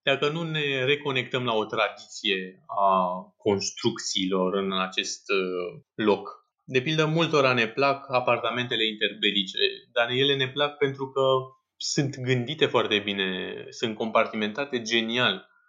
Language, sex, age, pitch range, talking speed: Romanian, male, 20-39, 110-140 Hz, 120 wpm